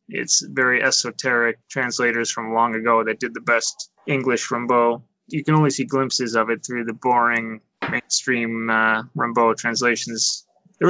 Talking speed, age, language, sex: 155 wpm, 20-39, English, male